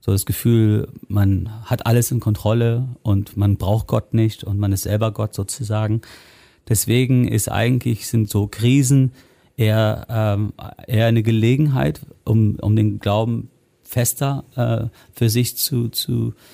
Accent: German